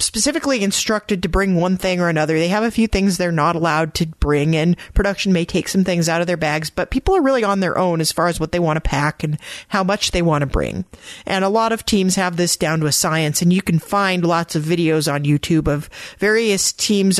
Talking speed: 255 wpm